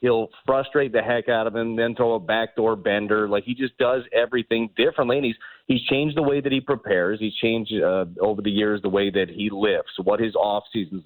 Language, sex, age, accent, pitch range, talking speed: English, male, 30-49, American, 100-130 Hz, 225 wpm